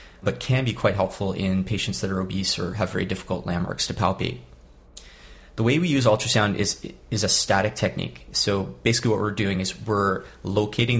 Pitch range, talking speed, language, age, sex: 95-110 Hz, 190 wpm, English, 30-49, male